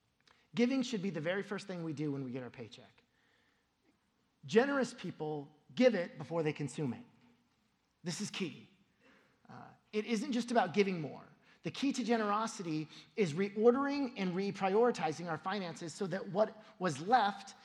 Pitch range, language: 190-250 Hz, English